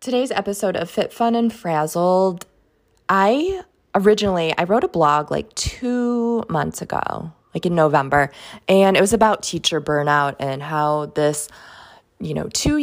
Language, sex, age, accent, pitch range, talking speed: English, female, 20-39, American, 150-195 Hz, 150 wpm